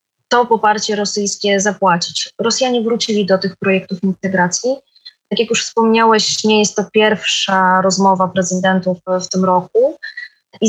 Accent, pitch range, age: native, 190-225 Hz, 20-39